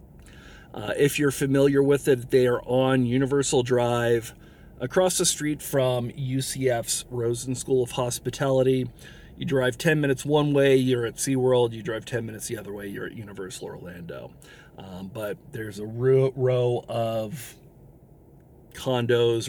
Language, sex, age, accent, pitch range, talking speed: English, male, 40-59, American, 115-140 Hz, 145 wpm